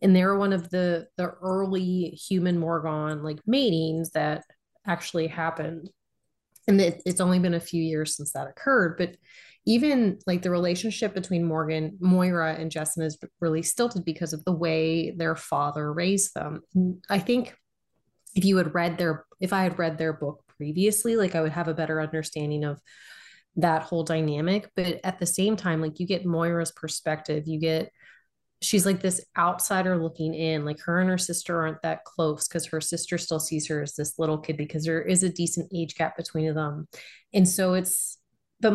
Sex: female